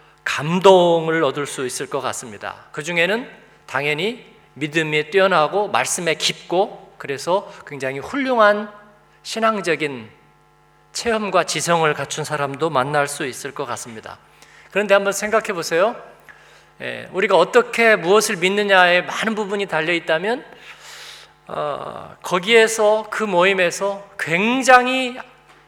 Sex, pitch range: male, 155-215 Hz